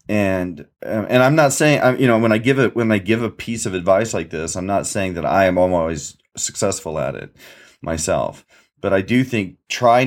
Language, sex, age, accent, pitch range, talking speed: English, male, 30-49, American, 95-120 Hz, 215 wpm